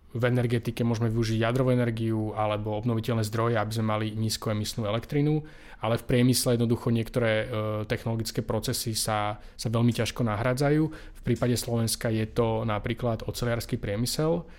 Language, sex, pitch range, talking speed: Slovak, male, 110-125 Hz, 140 wpm